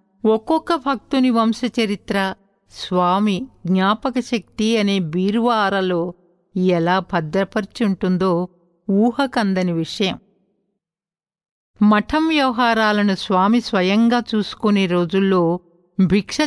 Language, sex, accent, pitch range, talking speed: Telugu, female, native, 180-225 Hz, 70 wpm